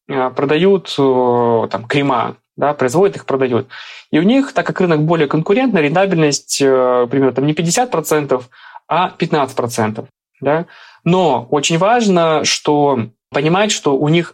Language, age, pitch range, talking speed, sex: Russian, 20-39, 135-170 Hz, 130 wpm, male